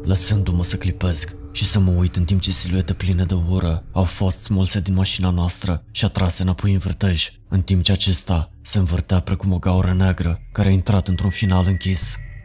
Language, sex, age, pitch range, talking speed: Romanian, male, 20-39, 90-100 Hz, 200 wpm